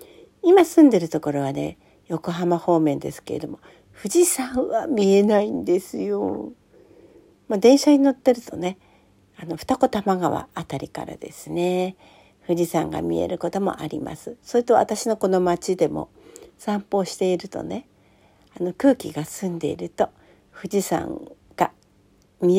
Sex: female